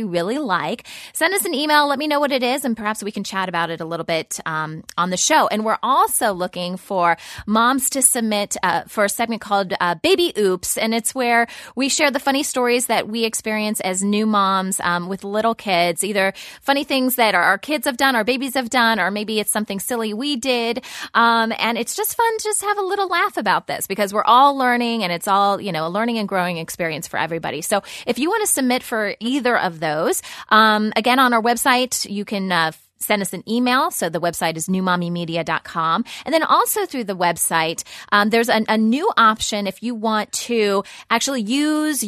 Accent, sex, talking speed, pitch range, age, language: American, female, 220 wpm, 190-250 Hz, 20-39, English